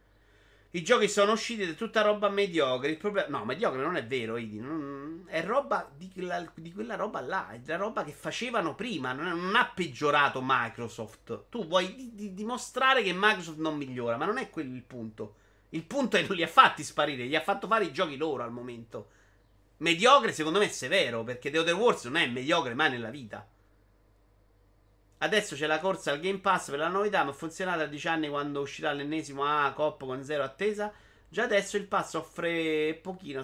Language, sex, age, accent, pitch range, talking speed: Italian, male, 30-49, native, 125-185 Hz, 195 wpm